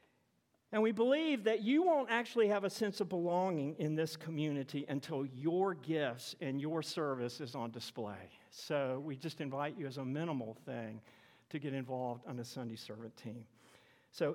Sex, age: male, 50-69